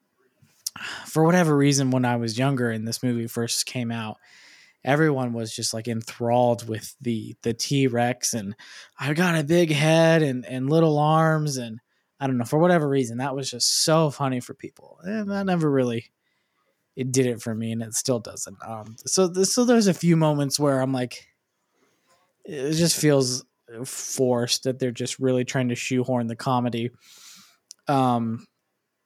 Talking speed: 170 wpm